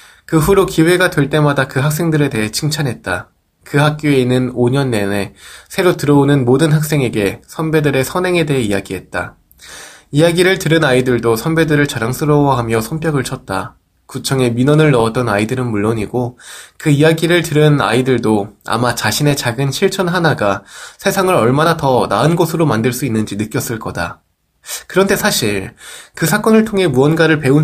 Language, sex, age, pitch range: Korean, male, 20-39, 115-155 Hz